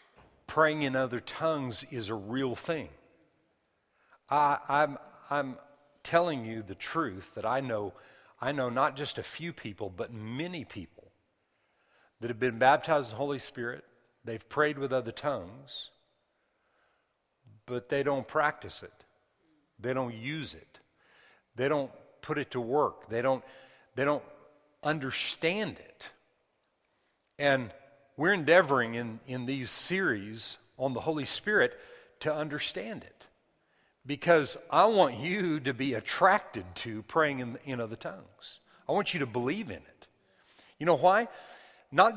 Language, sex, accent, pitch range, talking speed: English, male, American, 125-170 Hz, 140 wpm